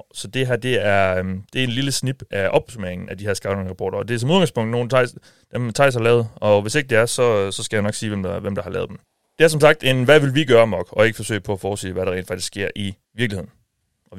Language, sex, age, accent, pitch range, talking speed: Danish, male, 30-49, native, 105-130 Hz, 290 wpm